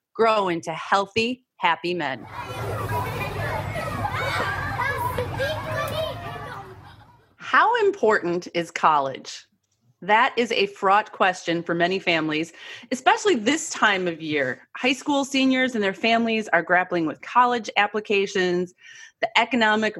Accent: American